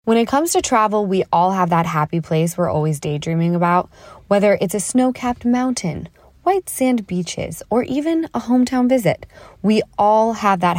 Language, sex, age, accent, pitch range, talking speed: English, female, 20-39, American, 175-235 Hz, 180 wpm